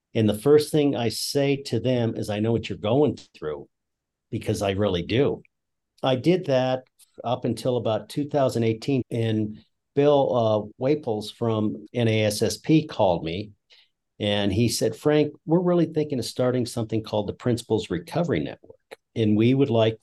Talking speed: 160 wpm